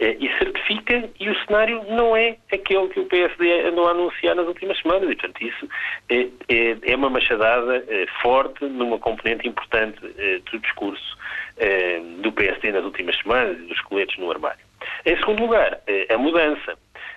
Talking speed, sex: 155 wpm, male